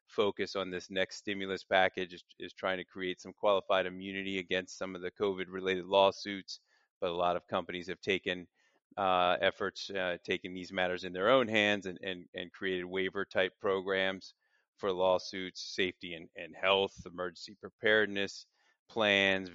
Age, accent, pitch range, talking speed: 30-49, American, 95-105 Hz, 160 wpm